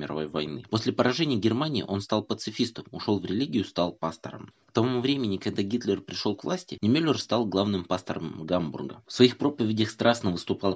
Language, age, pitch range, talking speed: Russian, 20-39, 80-110 Hz, 175 wpm